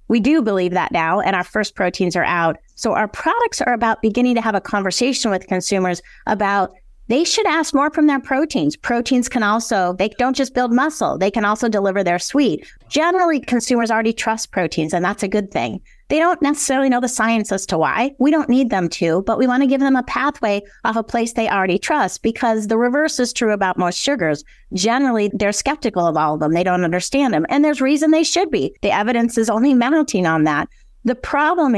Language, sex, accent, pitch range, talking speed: English, female, American, 185-245 Hz, 220 wpm